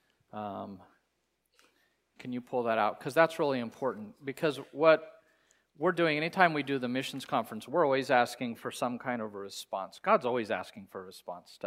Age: 40-59